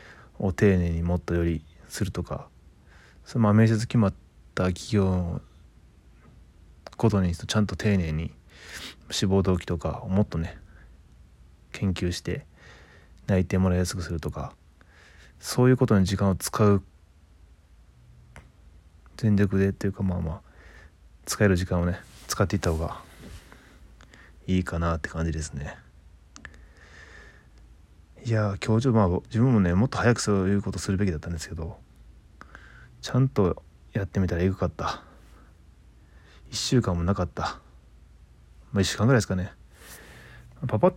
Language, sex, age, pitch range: Japanese, male, 20-39, 75-100 Hz